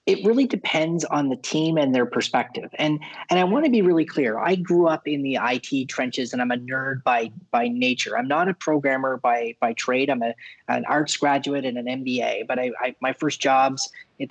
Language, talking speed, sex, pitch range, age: English, 220 wpm, male, 125-180 Hz, 30-49